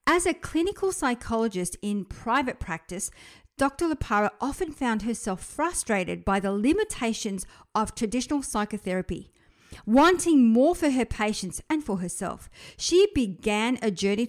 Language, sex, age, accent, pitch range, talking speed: English, female, 50-69, Australian, 210-285 Hz, 130 wpm